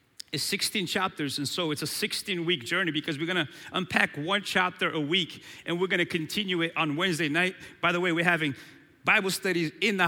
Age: 30-49